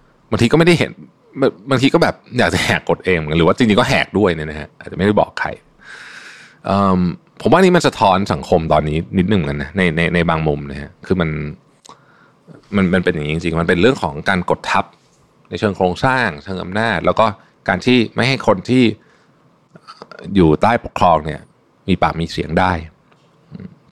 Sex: male